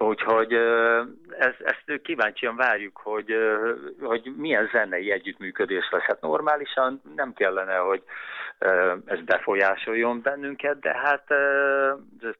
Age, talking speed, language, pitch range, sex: 60-79, 105 wpm, Hungarian, 100-130 Hz, male